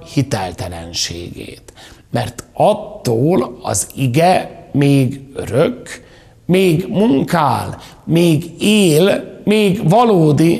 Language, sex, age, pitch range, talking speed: Hungarian, male, 60-79, 105-165 Hz, 75 wpm